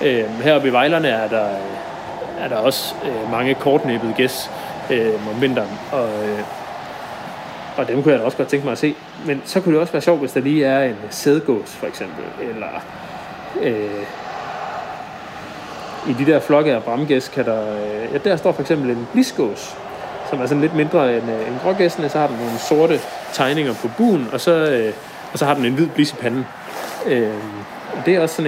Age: 30-49